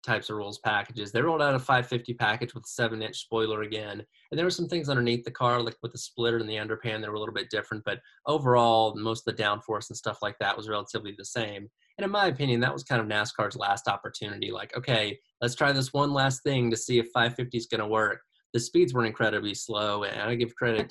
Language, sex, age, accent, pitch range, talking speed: English, male, 20-39, American, 110-120 Hz, 245 wpm